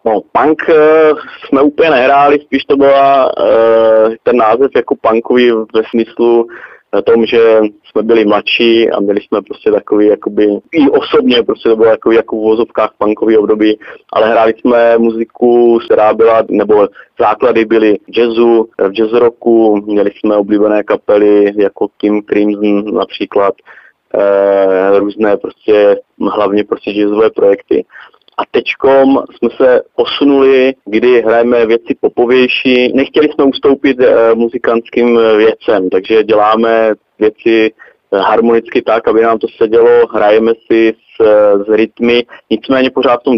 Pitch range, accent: 105-125 Hz, native